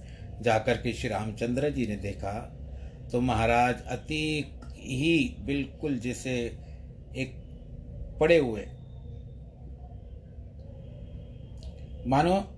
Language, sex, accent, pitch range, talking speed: Hindi, male, native, 105-135 Hz, 80 wpm